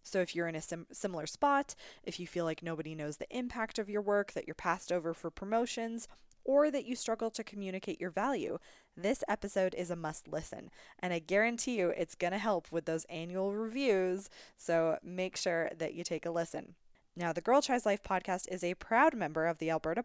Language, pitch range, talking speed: English, 165-215 Hz, 210 wpm